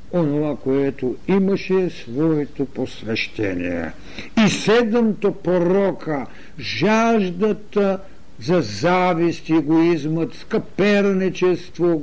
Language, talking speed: Bulgarian, 65 wpm